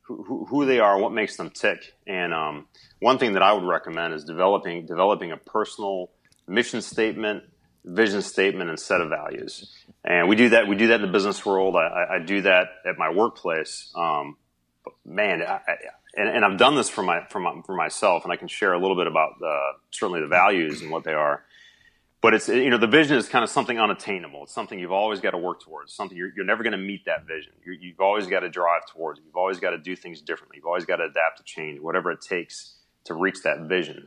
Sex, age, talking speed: male, 30-49, 240 wpm